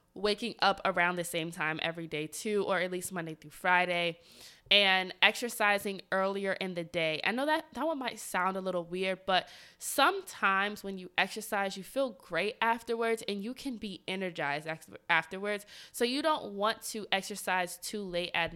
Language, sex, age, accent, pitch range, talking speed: English, female, 20-39, American, 180-225 Hz, 180 wpm